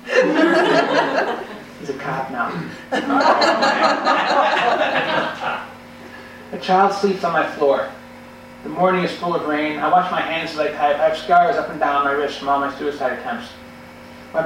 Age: 40-59